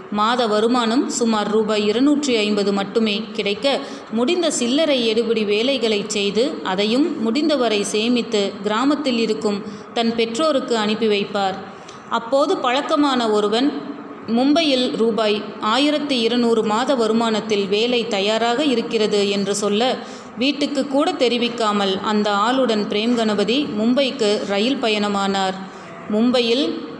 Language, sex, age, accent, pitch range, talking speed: Tamil, female, 30-49, native, 210-255 Hz, 100 wpm